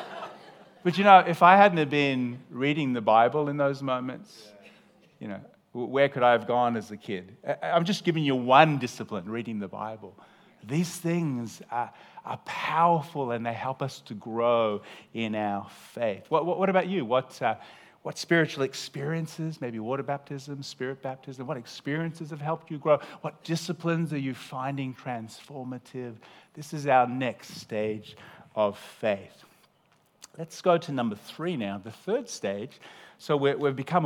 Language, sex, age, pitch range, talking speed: English, male, 40-59, 120-160 Hz, 160 wpm